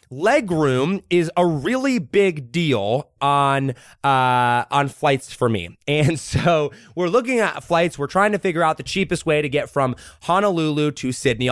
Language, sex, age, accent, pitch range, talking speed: English, male, 20-39, American, 125-180 Hz, 165 wpm